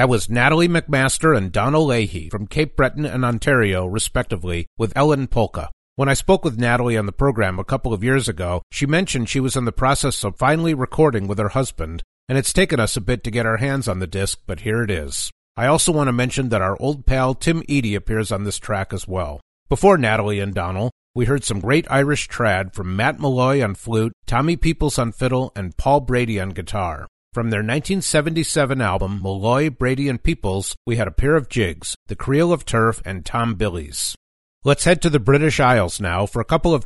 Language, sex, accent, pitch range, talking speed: English, male, American, 100-140 Hz, 215 wpm